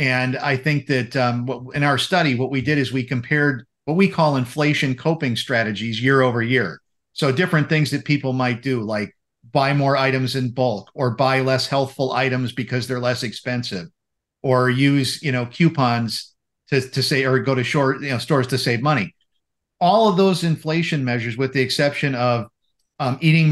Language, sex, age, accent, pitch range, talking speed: English, male, 50-69, American, 125-145 Hz, 190 wpm